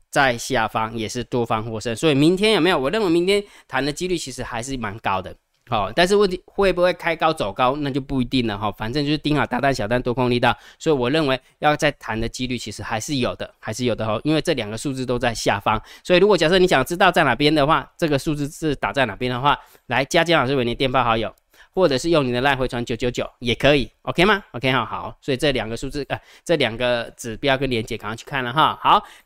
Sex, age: male, 20-39